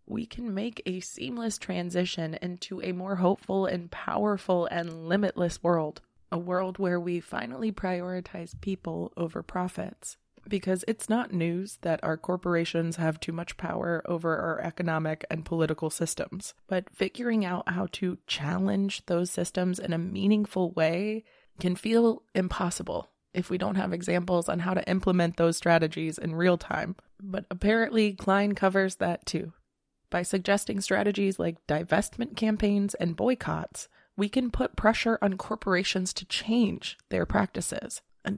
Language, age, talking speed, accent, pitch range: English, 20-39, 150 wpm, American, 175-205 Hz